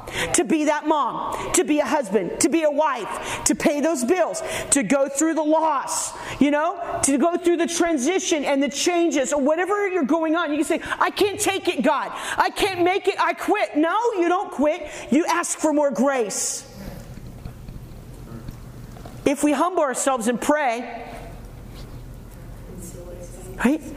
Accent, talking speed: American, 165 wpm